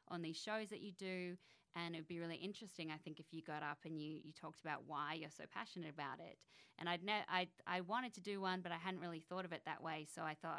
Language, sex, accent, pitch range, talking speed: English, female, Australian, 160-190 Hz, 280 wpm